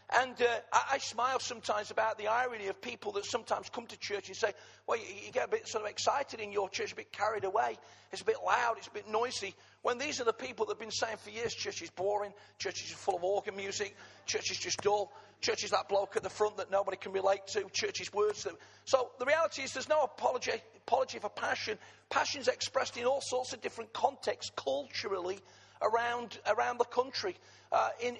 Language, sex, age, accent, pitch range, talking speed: English, male, 40-59, British, 210-260 Hz, 230 wpm